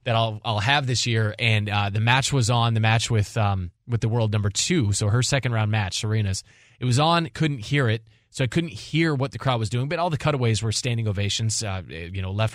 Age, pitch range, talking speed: 20-39, 110-155 Hz, 255 wpm